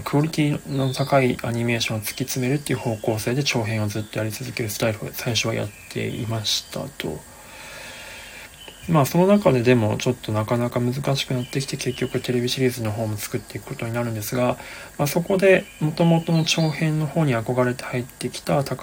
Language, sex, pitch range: Japanese, male, 115-140 Hz